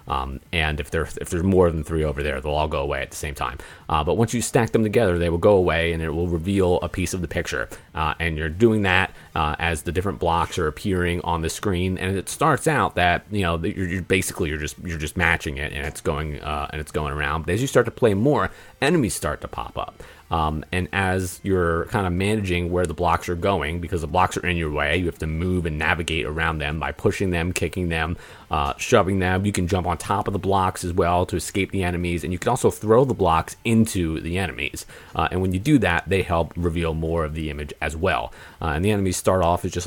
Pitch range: 80-95 Hz